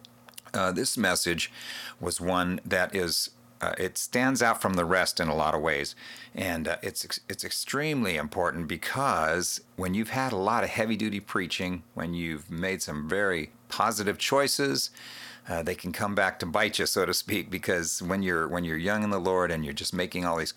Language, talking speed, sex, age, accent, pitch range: English, 195 wpm, male, 50-69, American, 80-105 Hz